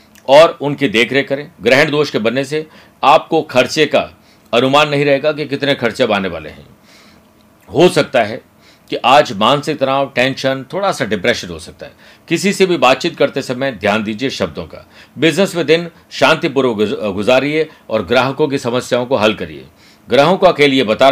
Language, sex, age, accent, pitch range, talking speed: Hindi, male, 50-69, native, 120-150 Hz, 175 wpm